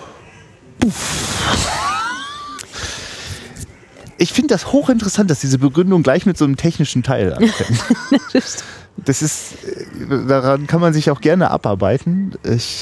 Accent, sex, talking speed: German, male, 115 wpm